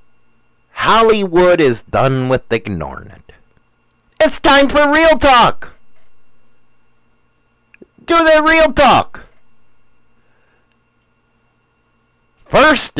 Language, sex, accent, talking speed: English, male, American, 75 wpm